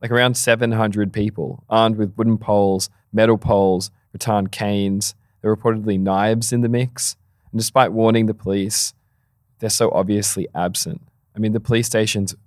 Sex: male